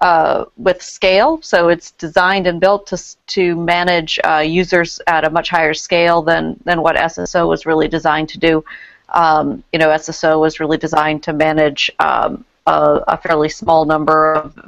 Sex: female